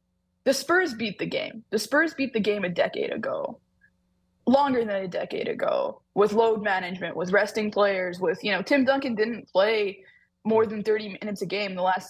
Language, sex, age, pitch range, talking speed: English, female, 20-39, 195-265 Hz, 195 wpm